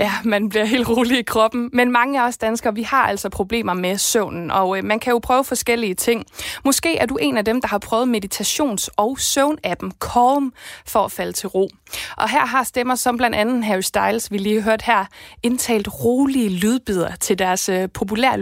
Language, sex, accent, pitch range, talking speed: Danish, female, native, 195-245 Hz, 200 wpm